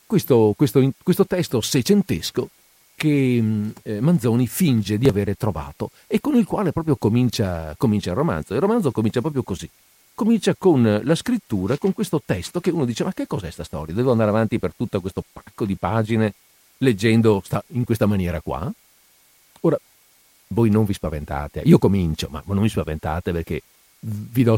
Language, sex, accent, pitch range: Italian, male, native, 95-135 Hz